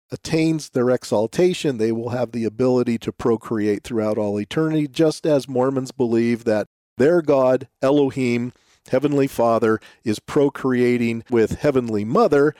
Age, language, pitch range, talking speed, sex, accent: 50-69, English, 115-160 Hz, 135 wpm, male, American